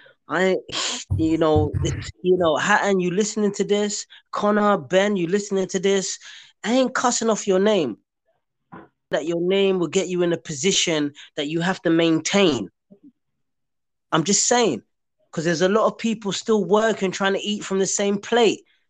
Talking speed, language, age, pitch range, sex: 170 wpm, English, 20-39, 175-225 Hz, male